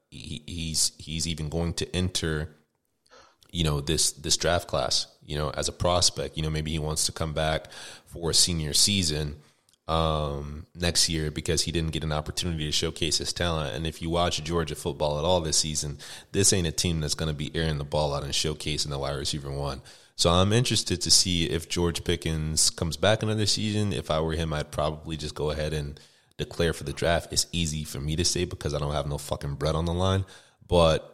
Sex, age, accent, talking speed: male, 30-49, American, 220 wpm